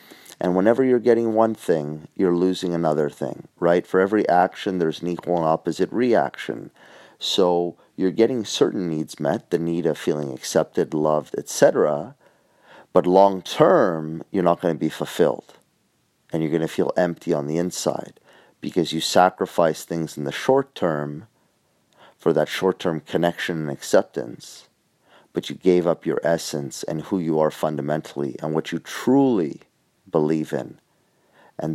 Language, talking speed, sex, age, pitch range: English, 160 wpm, male, 30-49, 75-85 Hz